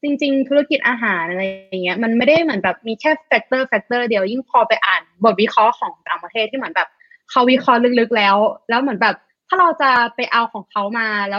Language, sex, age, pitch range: Thai, female, 20-39, 205-255 Hz